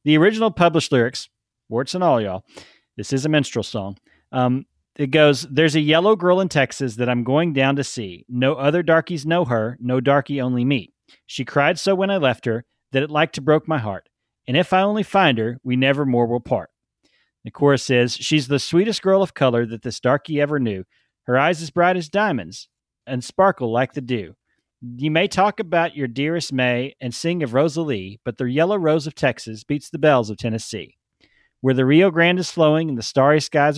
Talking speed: 210 wpm